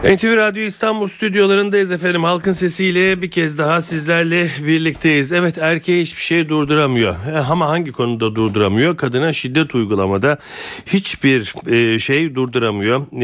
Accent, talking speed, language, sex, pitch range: native, 120 wpm, Turkish, male, 110-145 Hz